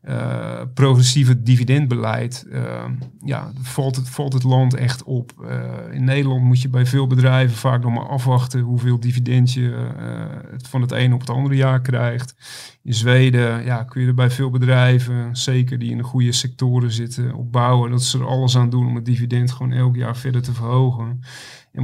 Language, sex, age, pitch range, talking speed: Dutch, male, 40-59, 125-130 Hz, 190 wpm